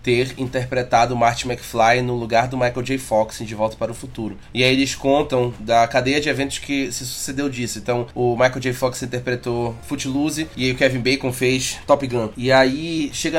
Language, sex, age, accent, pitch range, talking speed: Portuguese, male, 20-39, Brazilian, 130-195 Hz, 210 wpm